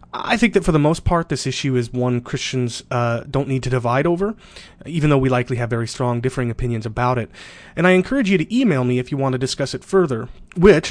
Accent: American